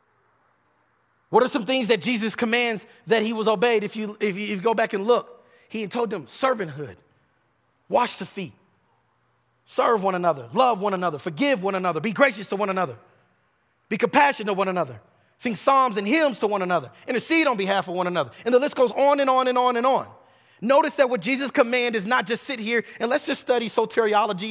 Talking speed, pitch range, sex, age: 205 wpm, 175-240 Hz, male, 30-49